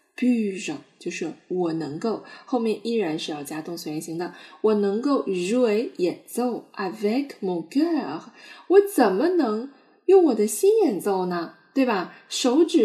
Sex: female